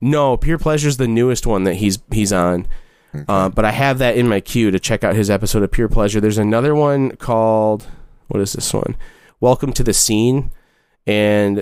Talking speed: 200 wpm